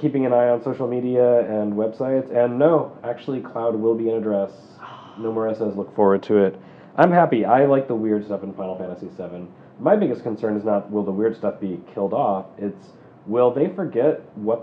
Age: 30-49